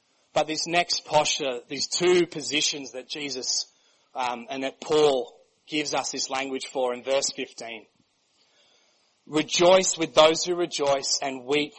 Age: 30-49